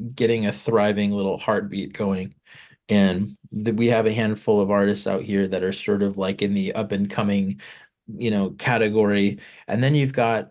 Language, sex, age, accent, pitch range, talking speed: English, male, 20-39, American, 100-110 Hz, 185 wpm